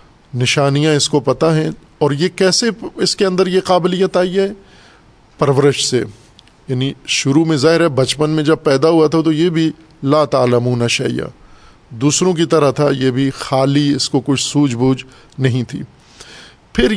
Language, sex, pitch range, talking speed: Urdu, male, 135-165 Hz, 175 wpm